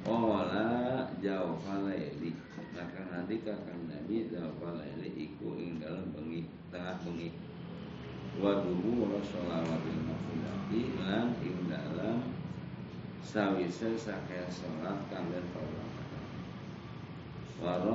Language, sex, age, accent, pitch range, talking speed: Indonesian, male, 50-69, native, 85-110 Hz, 60 wpm